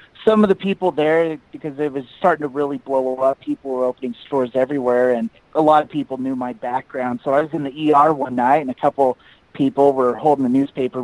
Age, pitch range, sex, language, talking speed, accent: 30-49, 120-150 Hz, male, English, 230 wpm, American